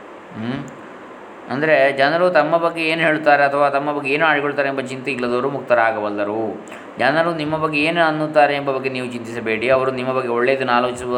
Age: 20-39